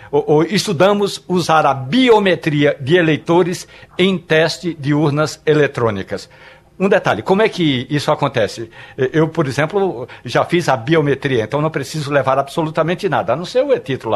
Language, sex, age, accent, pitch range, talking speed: Portuguese, male, 60-79, Brazilian, 140-180 Hz, 155 wpm